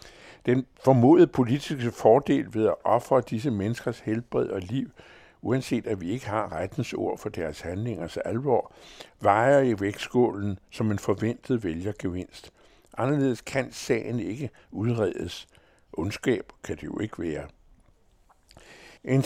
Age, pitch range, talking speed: 60-79, 95-125 Hz, 135 wpm